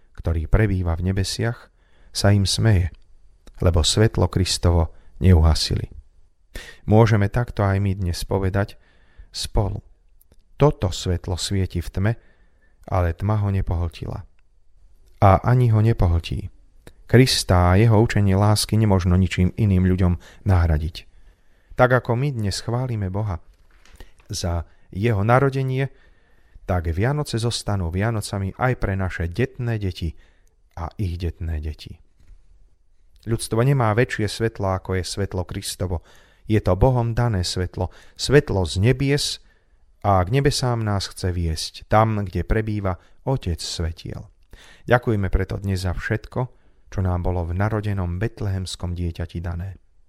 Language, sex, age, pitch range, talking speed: Slovak, male, 30-49, 85-110 Hz, 125 wpm